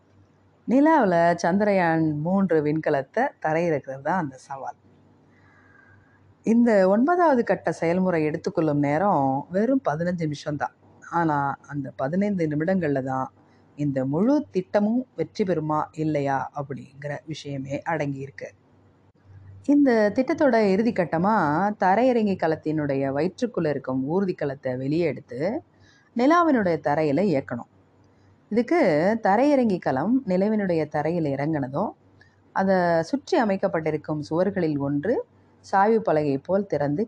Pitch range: 140-195 Hz